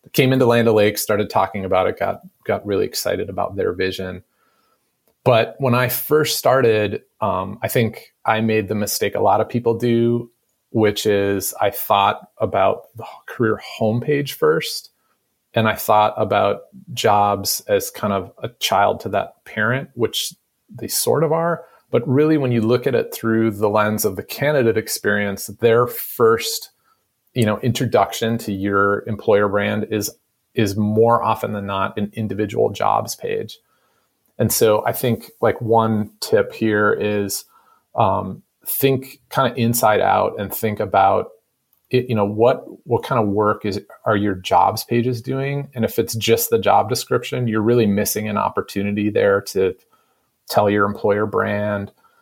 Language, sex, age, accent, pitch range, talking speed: English, male, 30-49, American, 105-125 Hz, 165 wpm